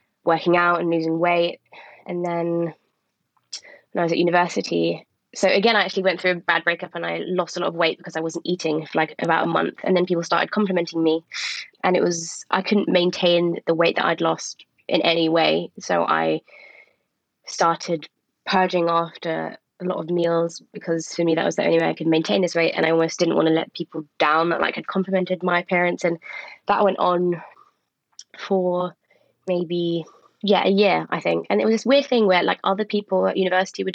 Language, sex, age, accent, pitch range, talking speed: English, female, 20-39, British, 165-185 Hz, 205 wpm